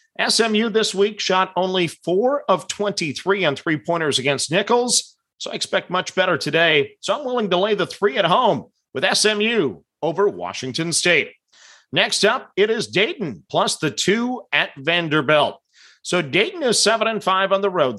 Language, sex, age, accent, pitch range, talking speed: English, male, 40-59, American, 165-210 Hz, 165 wpm